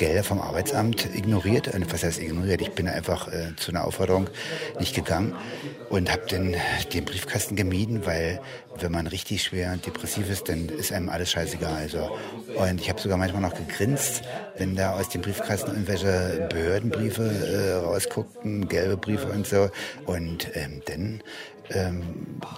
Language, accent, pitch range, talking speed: German, German, 85-100 Hz, 165 wpm